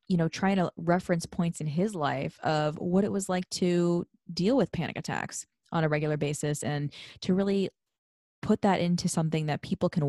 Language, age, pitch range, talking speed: English, 20-39, 150-180 Hz, 195 wpm